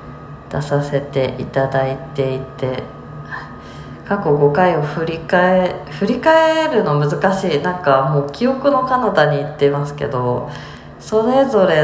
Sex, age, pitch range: female, 20-39, 135-170 Hz